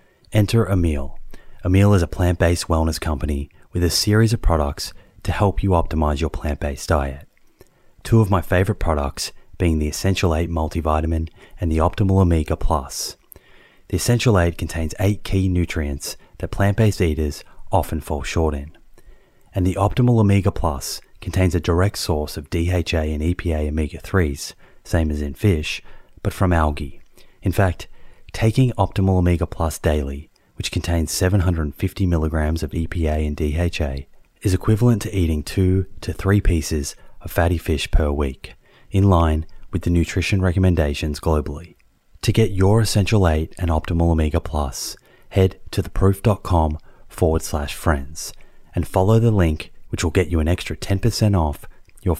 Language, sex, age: English, male, 30-49